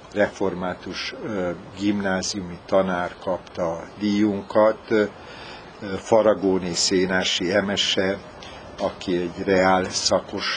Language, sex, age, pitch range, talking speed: Hungarian, male, 60-79, 90-105 Hz, 70 wpm